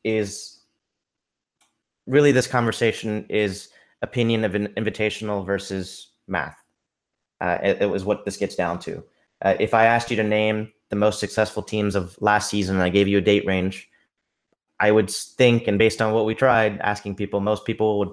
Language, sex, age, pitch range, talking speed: English, male, 30-49, 100-115 Hz, 180 wpm